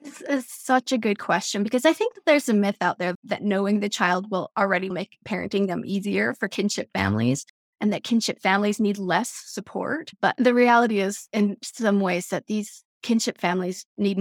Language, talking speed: English, 200 wpm